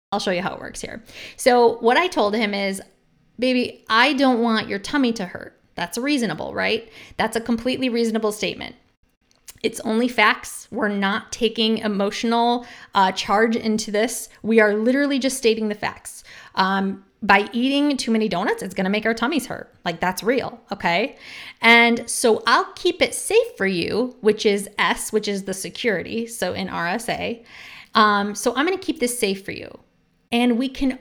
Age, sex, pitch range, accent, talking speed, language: 20-39, female, 205-245 Hz, American, 185 wpm, English